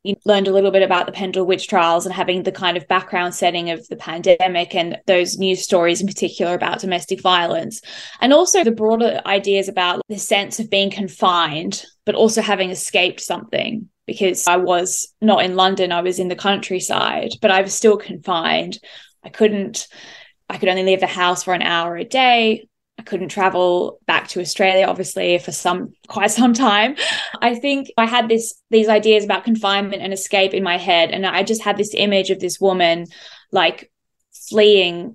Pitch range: 180-210 Hz